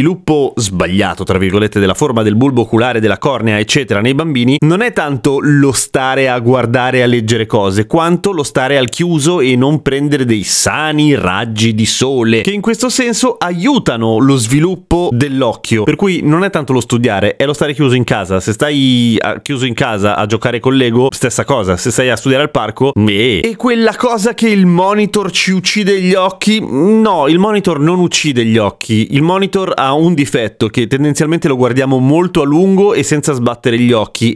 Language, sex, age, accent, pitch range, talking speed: Italian, male, 30-49, native, 115-155 Hz, 190 wpm